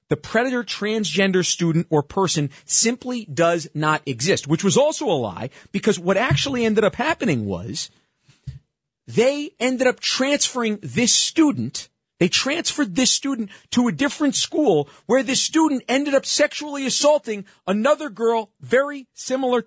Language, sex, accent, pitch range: English, male, American, 145-220 Hz